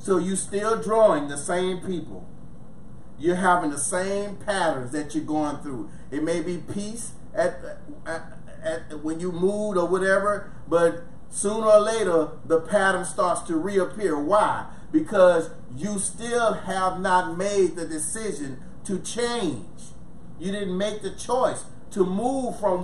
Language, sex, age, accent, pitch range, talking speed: English, male, 30-49, American, 175-215 Hz, 145 wpm